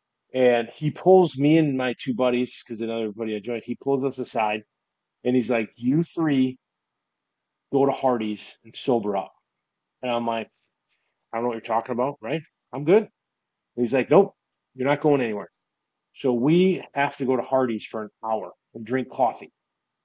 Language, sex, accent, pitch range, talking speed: English, male, American, 115-140 Hz, 185 wpm